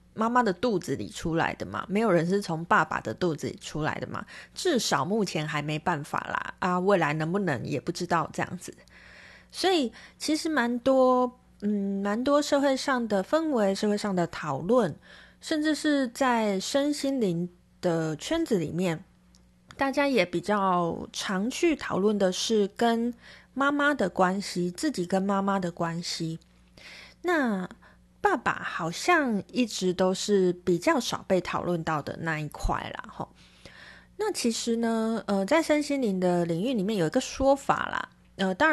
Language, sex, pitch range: Chinese, female, 180-245 Hz